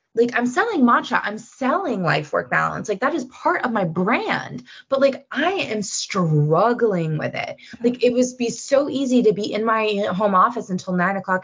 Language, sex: English, female